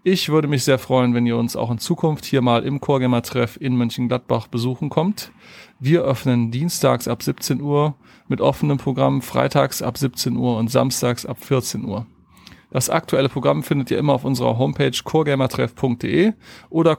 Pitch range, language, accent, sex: 125-145 Hz, German, German, male